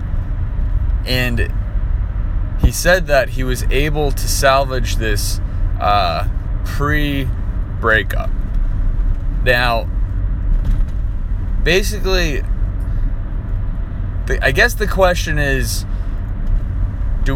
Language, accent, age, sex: English, American, 20-39, male